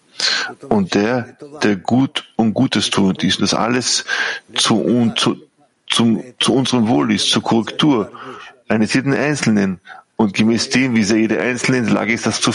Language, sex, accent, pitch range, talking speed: German, male, German, 105-130 Hz, 165 wpm